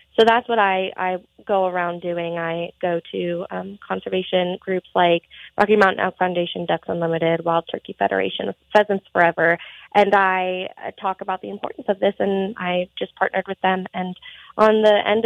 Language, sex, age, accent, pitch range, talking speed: English, female, 20-39, American, 180-205 Hz, 175 wpm